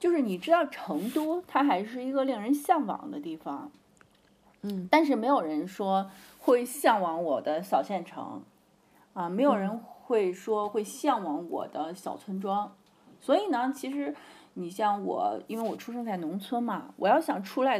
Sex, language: female, Chinese